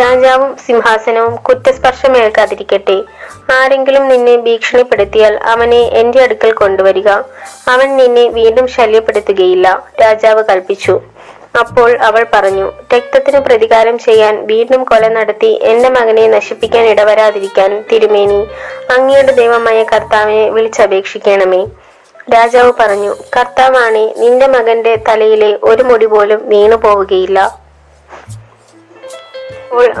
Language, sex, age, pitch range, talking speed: Malayalam, female, 20-39, 215-255 Hz, 90 wpm